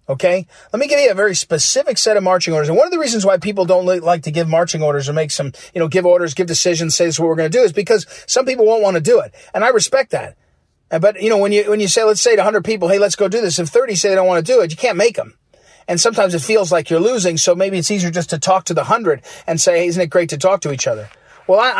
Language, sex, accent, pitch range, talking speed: English, male, American, 165-215 Hz, 320 wpm